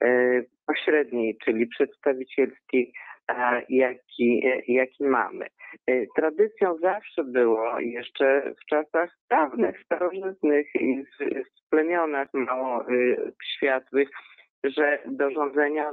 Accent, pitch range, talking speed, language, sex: native, 130-160 Hz, 85 wpm, Polish, male